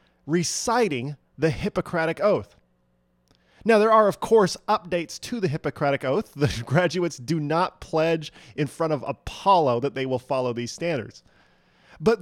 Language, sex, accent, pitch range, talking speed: English, male, American, 130-205 Hz, 145 wpm